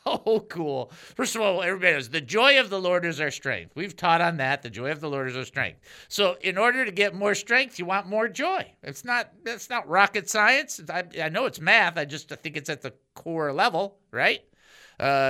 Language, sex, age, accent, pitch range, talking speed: English, male, 50-69, American, 145-215 Hz, 235 wpm